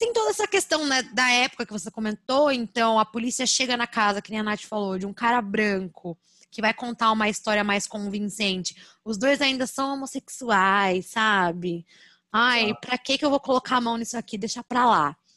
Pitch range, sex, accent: 200-255 Hz, female, Brazilian